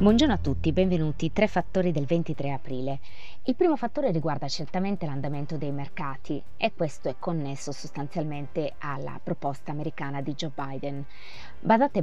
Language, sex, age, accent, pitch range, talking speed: Italian, female, 20-39, native, 140-185 Hz, 145 wpm